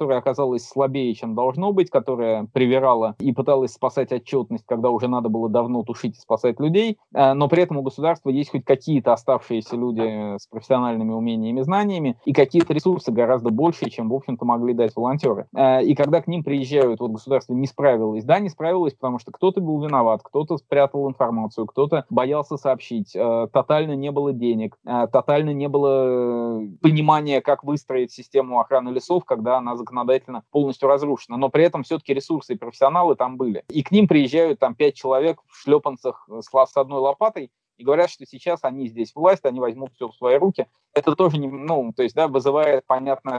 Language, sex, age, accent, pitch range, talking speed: Russian, male, 20-39, native, 120-150 Hz, 180 wpm